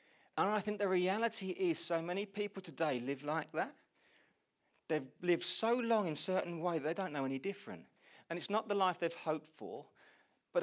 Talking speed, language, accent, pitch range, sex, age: 200 wpm, English, British, 135-190 Hz, male, 40-59